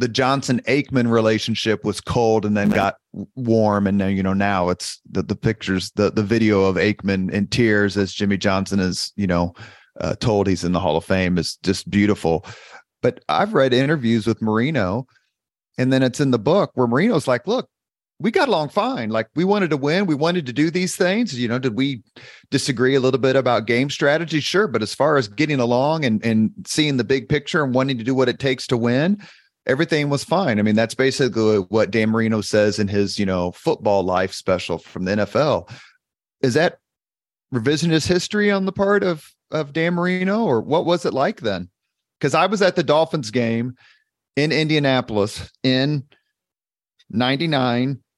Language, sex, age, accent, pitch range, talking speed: English, male, 30-49, American, 110-145 Hz, 195 wpm